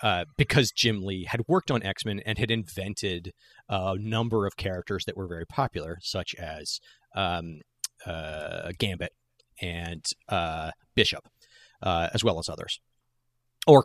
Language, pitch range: English, 95-120 Hz